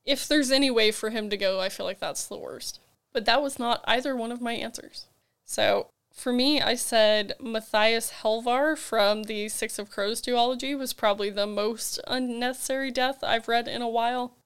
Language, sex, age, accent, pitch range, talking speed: English, female, 10-29, American, 210-250 Hz, 195 wpm